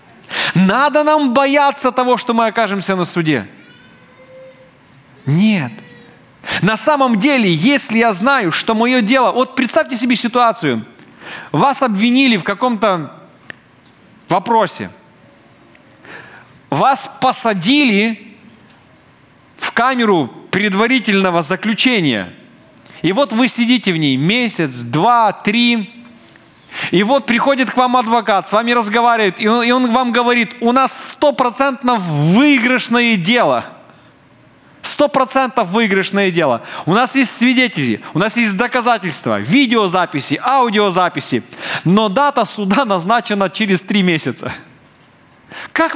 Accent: native